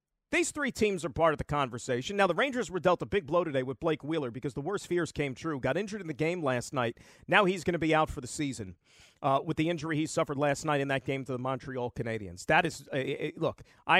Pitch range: 145-180 Hz